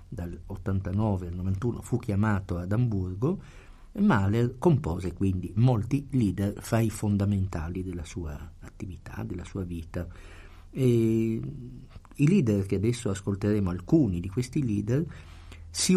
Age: 50-69